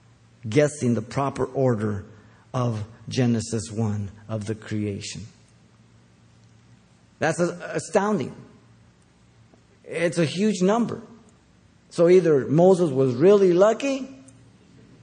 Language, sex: English, male